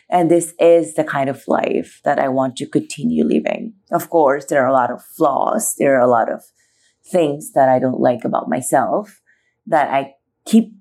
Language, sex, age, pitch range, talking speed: English, female, 30-49, 140-175 Hz, 200 wpm